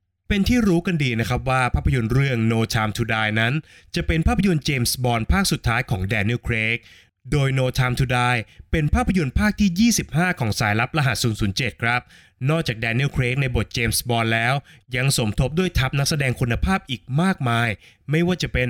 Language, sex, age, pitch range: Thai, male, 20-39, 110-140 Hz